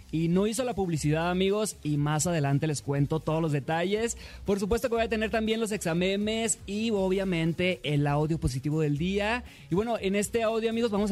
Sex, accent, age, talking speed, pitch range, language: male, Mexican, 20-39, 200 wpm, 155-205 Hz, Spanish